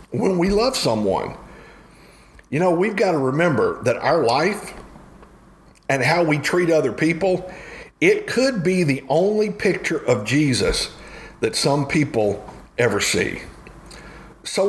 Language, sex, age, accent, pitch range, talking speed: English, male, 50-69, American, 120-170 Hz, 135 wpm